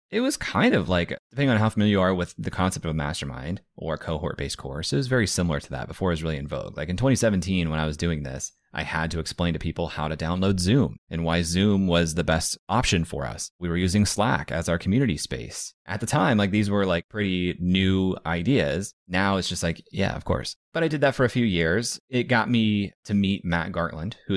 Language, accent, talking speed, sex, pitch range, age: English, American, 245 wpm, male, 80-100 Hz, 30-49